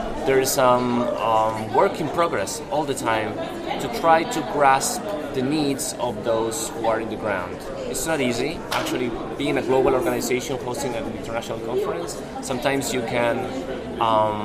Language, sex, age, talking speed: English, male, 30-49, 160 wpm